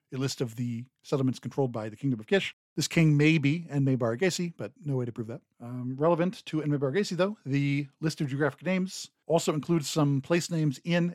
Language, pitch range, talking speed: English, 135-170 Hz, 215 wpm